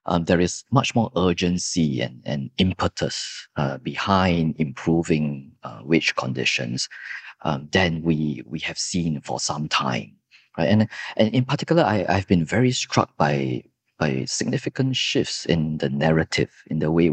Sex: male